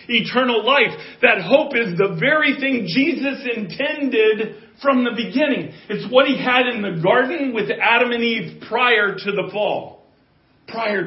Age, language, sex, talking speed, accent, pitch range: 40-59, English, male, 155 wpm, American, 210-255 Hz